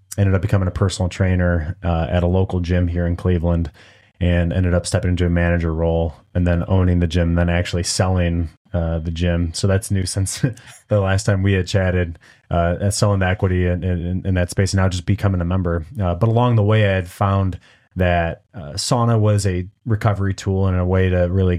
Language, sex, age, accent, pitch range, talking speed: English, male, 30-49, American, 85-95 Hz, 220 wpm